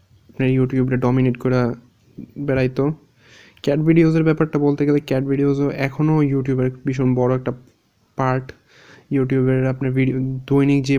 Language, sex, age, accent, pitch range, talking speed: Bengali, male, 20-39, native, 125-140 Hz, 115 wpm